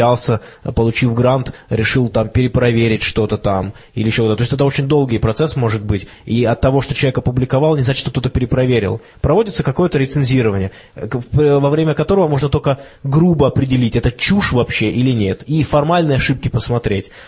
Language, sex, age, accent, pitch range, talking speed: Russian, male, 20-39, native, 115-140 Hz, 170 wpm